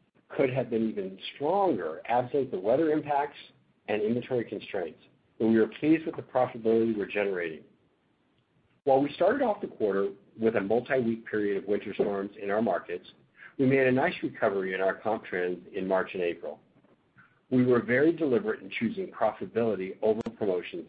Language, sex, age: English, male, 50-69